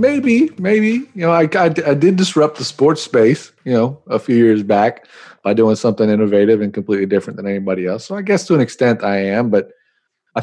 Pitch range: 110-135 Hz